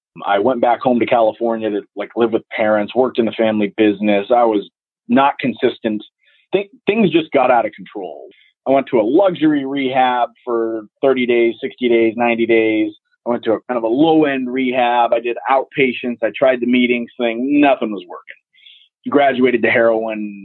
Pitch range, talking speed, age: 110-135 Hz, 185 wpm, 30-49